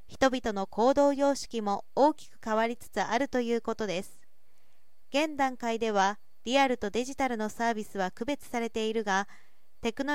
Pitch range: 220-275 Hz